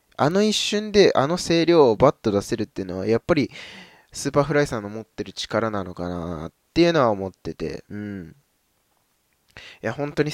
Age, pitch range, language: 20-39, 100-145 Hz, Japanese